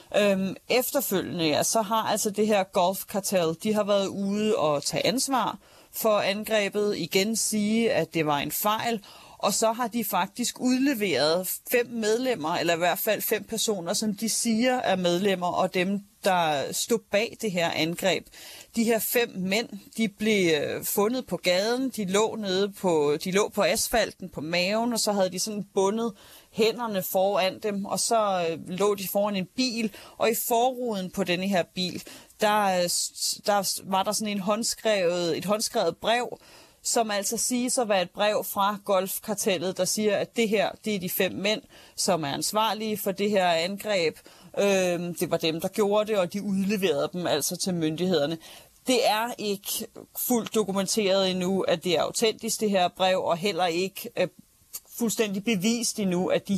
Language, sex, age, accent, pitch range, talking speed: Danish, female, 30-49, native, 185-220 Hz, 175 wpm